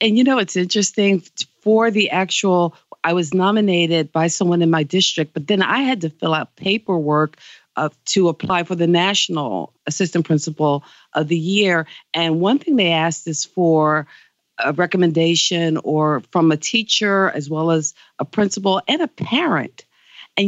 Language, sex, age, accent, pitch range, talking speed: English, female, 50-69, American, 155-185 Hz, 165 wpm